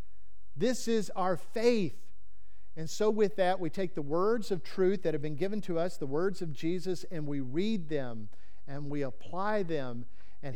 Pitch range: 130-190 Hz